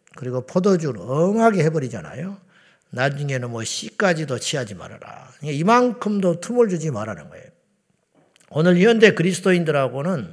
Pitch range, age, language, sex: 130-180 Hz, 50-69, Korean, male